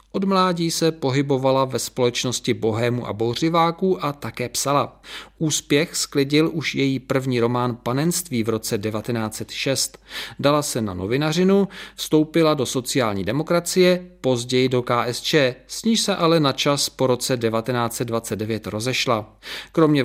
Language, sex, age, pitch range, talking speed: Czech, male, 40-59, 120-165 Hz, 130 wpm